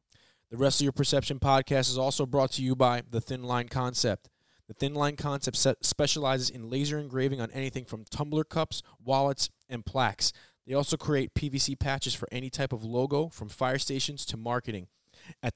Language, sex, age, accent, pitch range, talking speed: English, male, 20-39, American, 110-135 Hz, 190 wpm